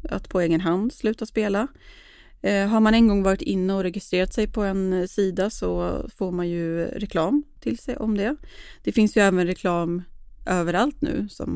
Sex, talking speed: female, 180 wpm